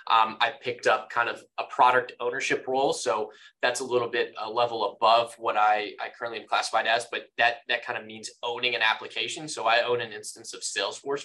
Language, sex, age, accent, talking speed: English, male, 20-39, American, 220 wpm